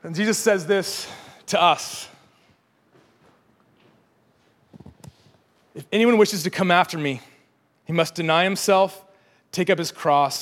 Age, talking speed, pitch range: 30-49, 120 wpm, 150-195 Hz